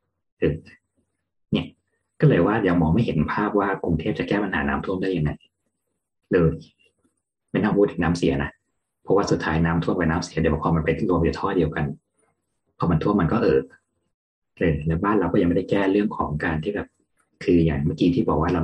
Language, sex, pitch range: Thai, male, 80-90 Hz